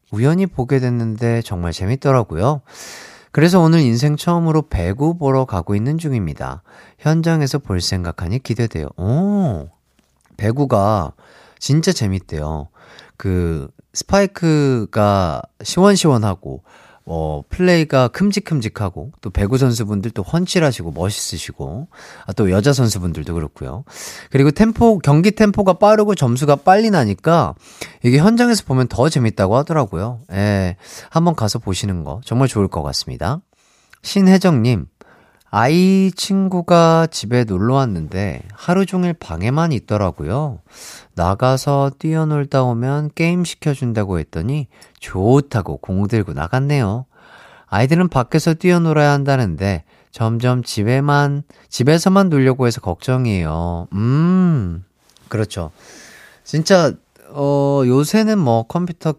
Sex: male